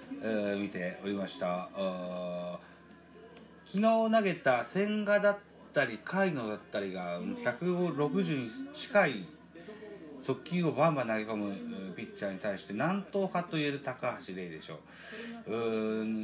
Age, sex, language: 40-59, male, Japanese